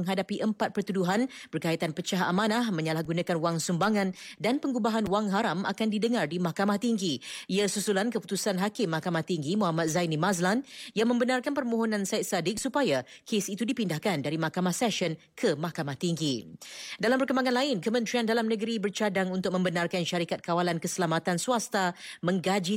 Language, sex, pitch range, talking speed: Malay, female, 175-225 Hz, 150 wpm